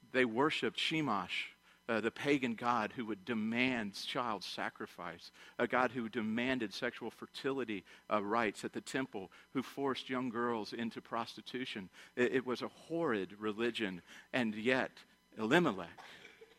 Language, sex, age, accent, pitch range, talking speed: English, male, 50-69, American, 105-135 Hz, 140 wpm